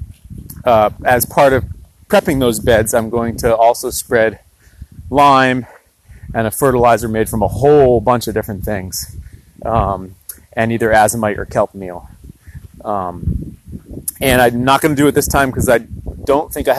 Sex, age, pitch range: male, 30-49, 95-125 Hz